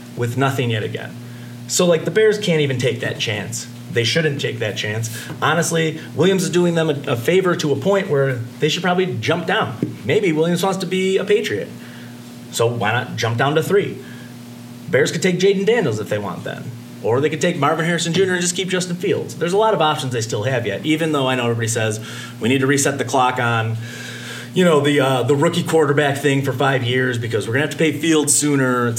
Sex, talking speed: male, 230 wpm